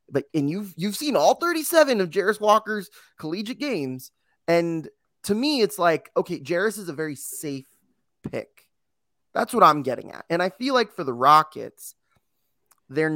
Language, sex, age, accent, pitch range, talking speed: English, male, 20-39, American, 140-200 Hz, 170 wpm